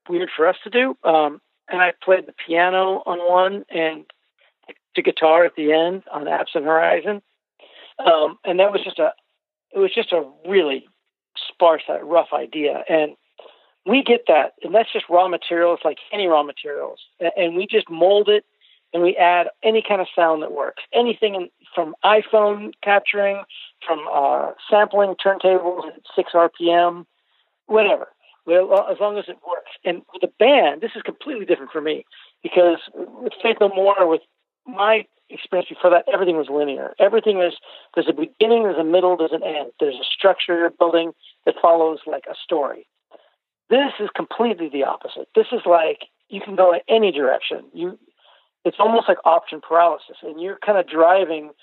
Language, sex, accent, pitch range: English, male, American, 165-215 Hz